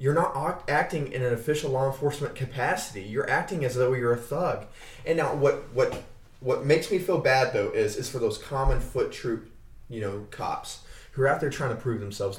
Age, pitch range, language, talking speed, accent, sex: 20-39, 115-165 Hz, English, 215 wpm, American, male